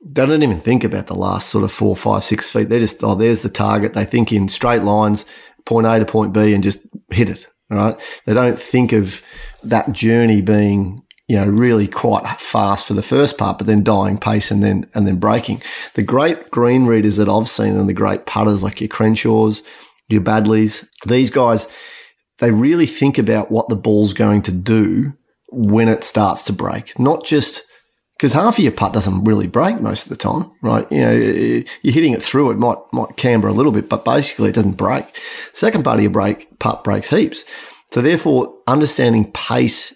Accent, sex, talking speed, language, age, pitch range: Australian, male, 205 wpm, English, 30-49, 105-115 Hz